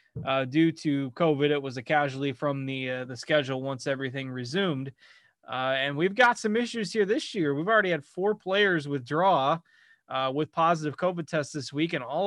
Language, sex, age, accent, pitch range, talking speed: English, male, 20-39, American, 135-155 Hz, 195 wpm